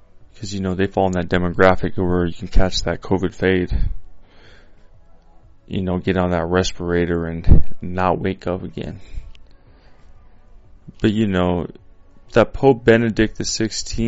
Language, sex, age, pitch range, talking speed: English, male, 20-39, 90-105 Hz, 140 wpm